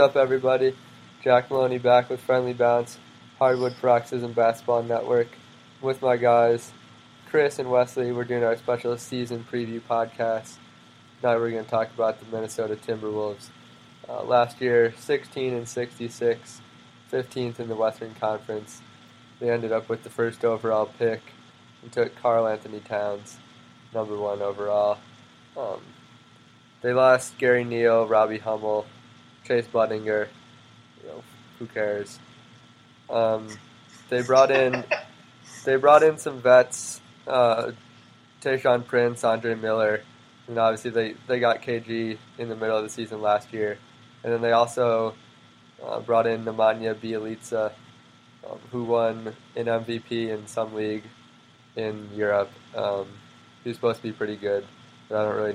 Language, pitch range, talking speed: English, 110-120 Hz, 140 wpm